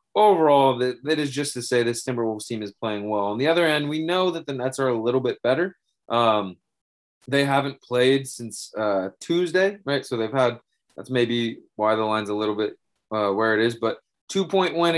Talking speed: 210 wpm